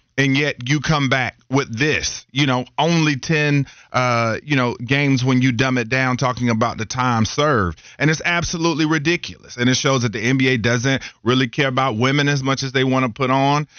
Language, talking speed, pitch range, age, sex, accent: English, 210 wpm, 120-140 Hz, 40-59, male, American